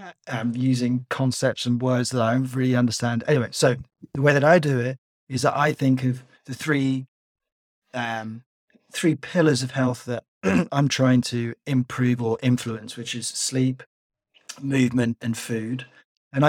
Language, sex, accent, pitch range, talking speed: English, male, British, 120-140 Hz, 165 wpm